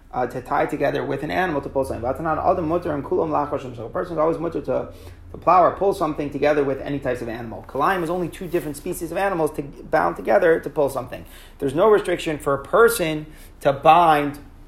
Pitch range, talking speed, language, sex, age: 140-170 Hz, 200 wpm, English, male, 30-49